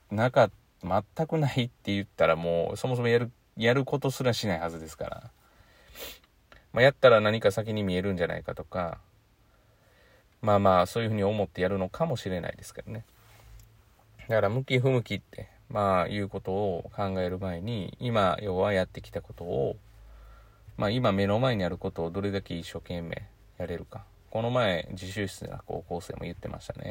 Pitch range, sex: 95-115 Hz, male